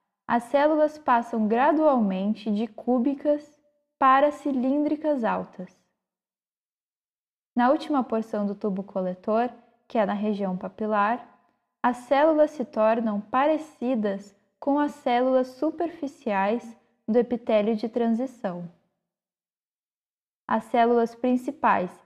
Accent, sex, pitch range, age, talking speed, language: Brazilian, female, 210-260 Hz, 10-29, 100 wpm, Portuguese